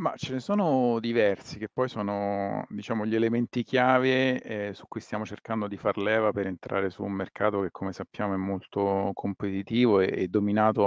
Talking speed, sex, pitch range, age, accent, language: 180 wpm, male, 100-125 Hz, 40-59, native, Italian